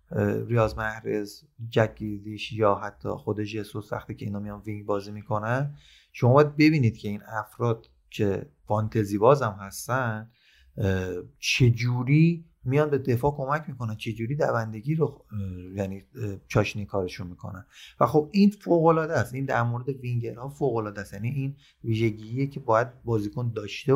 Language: Persian